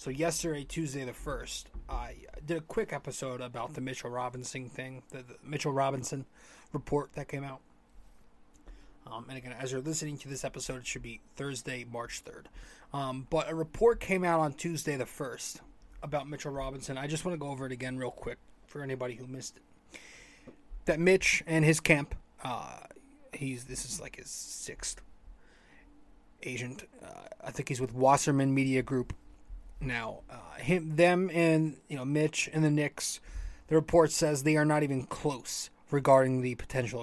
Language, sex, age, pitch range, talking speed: English, male, 20-39, 125-155 Hz, 175 wpm